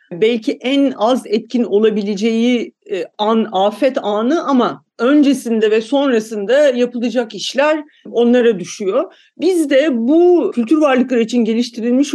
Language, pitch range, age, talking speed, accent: Turkish, 200-255 Hz, 50-69, 115 wpm, native